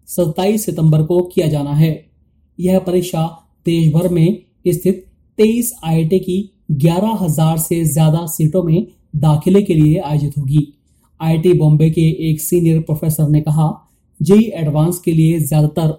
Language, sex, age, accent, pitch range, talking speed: Hindi, male, 20-39, native, 155-190 Hz, 145 wpm